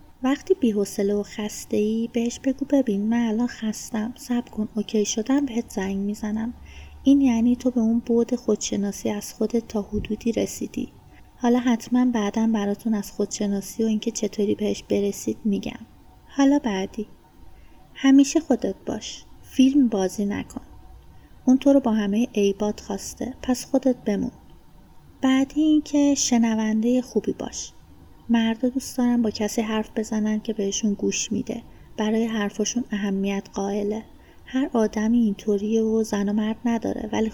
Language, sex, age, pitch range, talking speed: Persian, female, 30-49, 205-245 Hz, 140 wpm